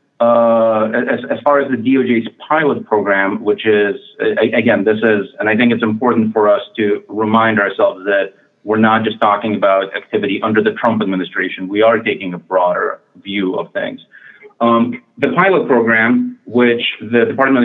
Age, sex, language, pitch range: 30-49, male, English, 110-135 Hz